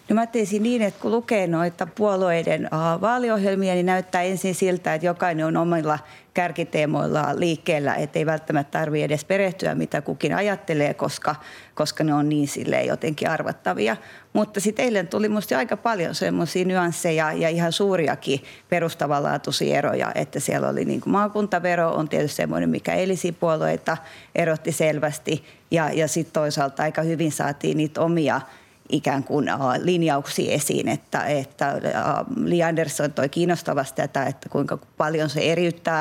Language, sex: Finnish, female